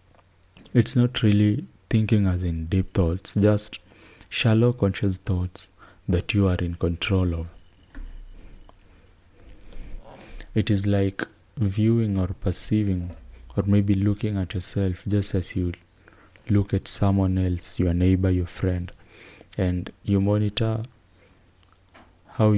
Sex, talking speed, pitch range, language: male, 115 wpm, 90-100 Hz, English